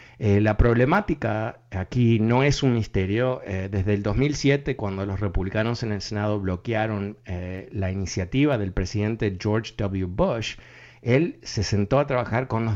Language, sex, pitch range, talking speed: Spanish, male, 100-120 Hz, 160 wpm